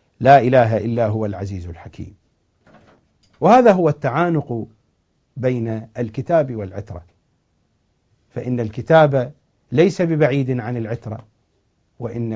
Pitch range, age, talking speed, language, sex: 105-140 Hz, 50-69, 90 wpm, English, male